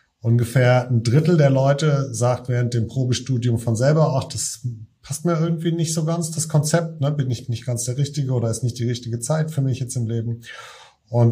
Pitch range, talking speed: 115-135 Hz, 210 wpm